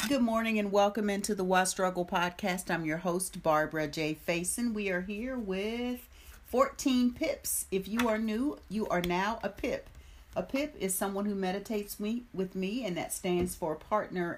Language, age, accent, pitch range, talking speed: English, 50-69, American, 165-210 Hz, 180 wpm